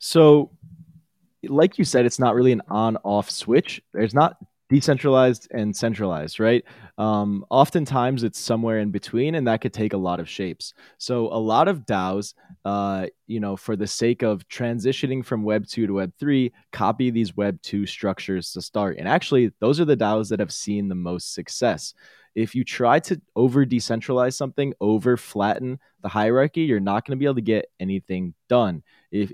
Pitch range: 95-125 Hz